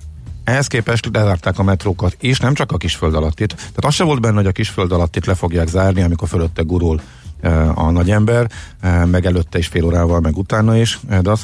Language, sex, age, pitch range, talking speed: Hungarian, male, 50-69, 85-105 Hz, 225 wpm